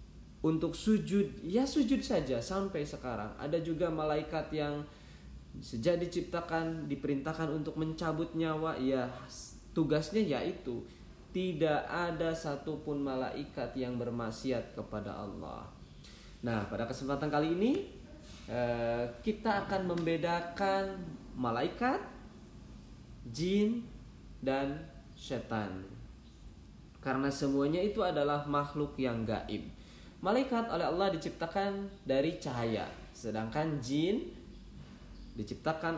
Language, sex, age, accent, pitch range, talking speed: Indonesian, male, 20-39, native, 115-165 Hz, 95 wpm